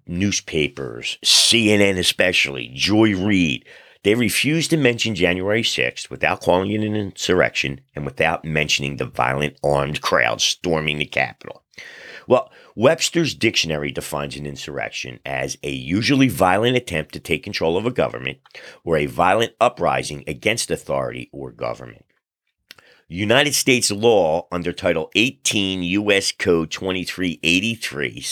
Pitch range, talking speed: 75-110 Hz, 125 wpm